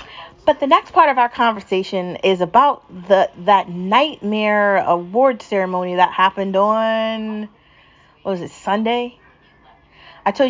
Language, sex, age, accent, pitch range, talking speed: English, female, 30-49, American, 175-220 Hz, 130 wpm